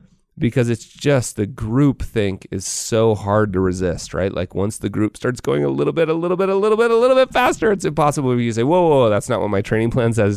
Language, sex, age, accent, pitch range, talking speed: English, male, 30-49, American, 105-145 Hz, 265 wpm